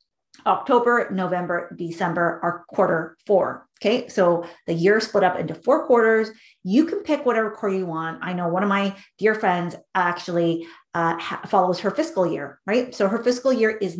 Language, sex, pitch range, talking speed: English, female, 180-235 Hz, 175 wpm